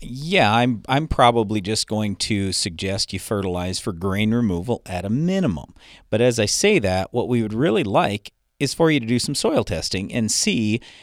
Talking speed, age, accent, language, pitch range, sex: 195 wpm, 40-59, American, English, 95-120 Hz, male